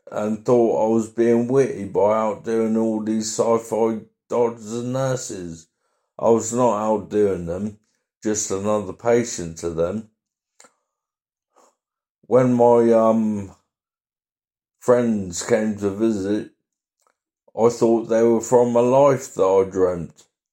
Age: 50-69